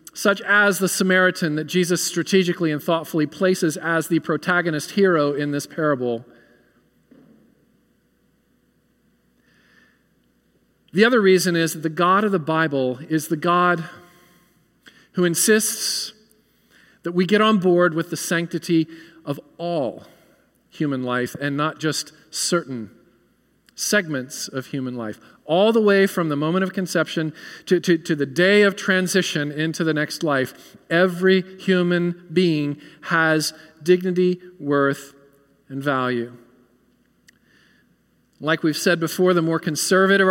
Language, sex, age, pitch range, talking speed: English, male, 40-59, 155-185 Hz, 130 wpm